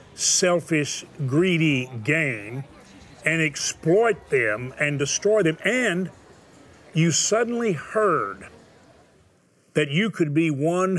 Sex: male